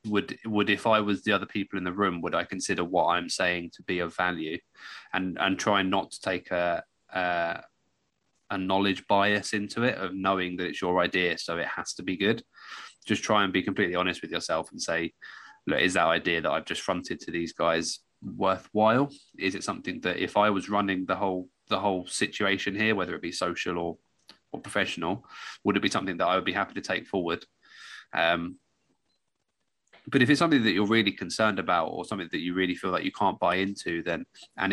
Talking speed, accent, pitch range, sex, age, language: 215 wpm, British, 90-105 Hz, male, 20-39, English